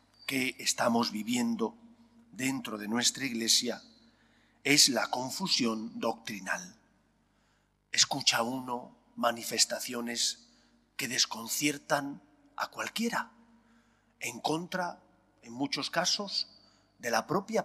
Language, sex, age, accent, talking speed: English, male, 40-59, Spanish, 90 wpm